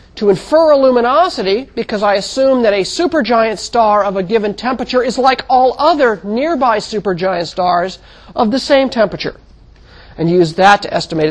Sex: male